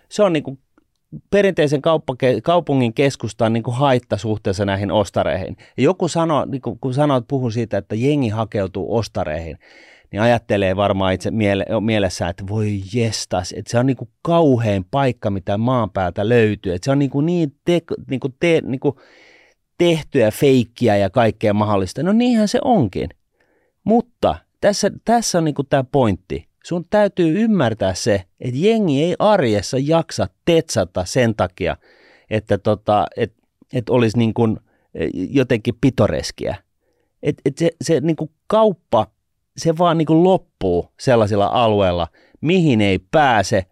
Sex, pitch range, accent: male, 105-150 Hz, native